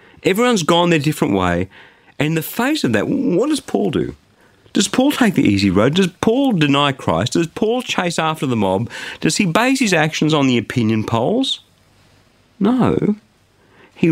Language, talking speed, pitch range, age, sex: English, 180 wpm, 110-175 Hz, 50-69, male